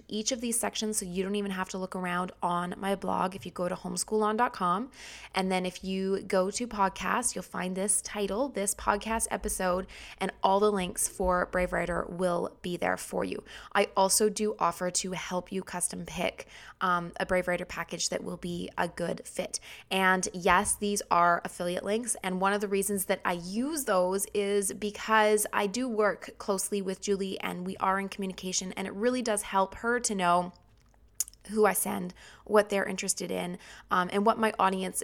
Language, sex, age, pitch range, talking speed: English, female, 20-39, 185-210 Hz, 195 wpm